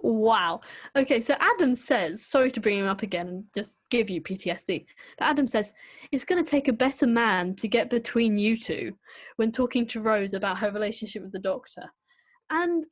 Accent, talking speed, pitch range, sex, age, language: British, 190 wpm, 205-260 Hz, female, 10-29, English